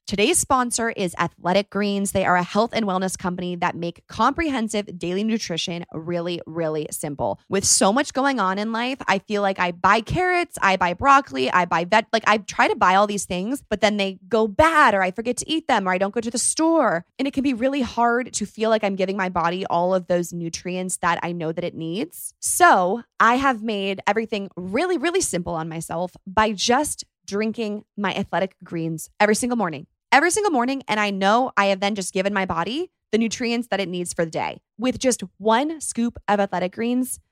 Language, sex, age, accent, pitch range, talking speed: English, female, 20-39, American, 185-250 Hz, 215 wpm